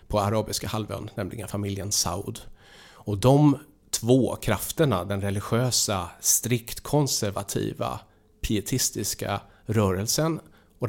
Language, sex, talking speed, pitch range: English, male, 95 wpm, 100-125 Hz